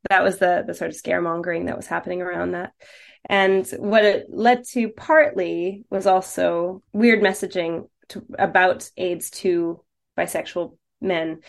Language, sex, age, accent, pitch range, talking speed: English, female, 20-39, American, 170-205 Hz, 145 wpm